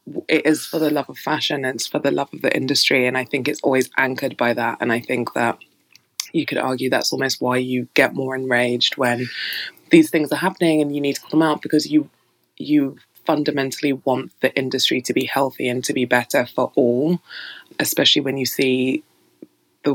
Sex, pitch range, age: female, 130-150 Hz, 20-39